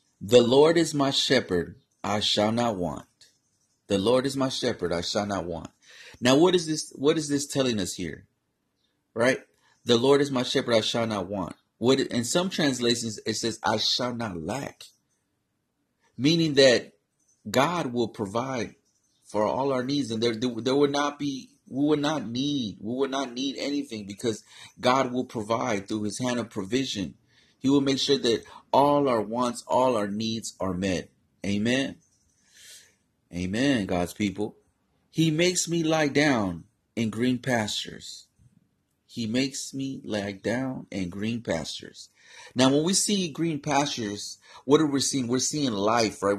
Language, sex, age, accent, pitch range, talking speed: English, male, 30-49, American, 105-140 Hz, 165 wpm